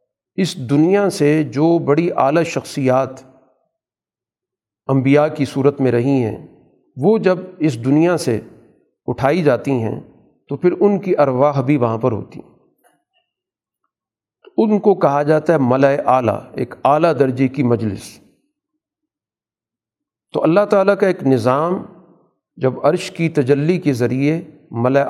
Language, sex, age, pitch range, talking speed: Urdu, male, 50-69, 135-180 Hz, 135 wpm